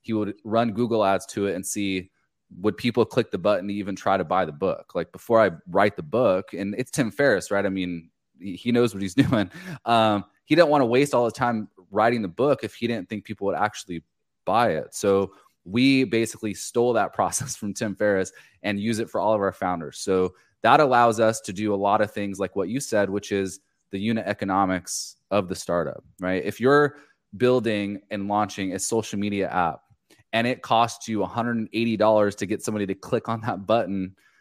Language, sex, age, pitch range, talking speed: English, male, 20-39, 95-115 Hz, 215 wpm